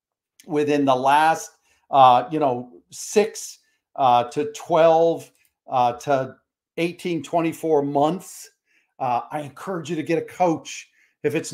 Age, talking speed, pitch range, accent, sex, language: 50-69, 130 wpm, 140-165 Hz, American, male, English